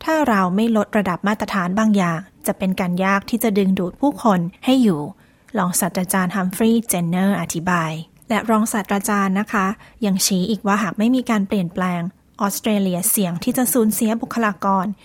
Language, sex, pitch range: Thai, female, 185-225 Hz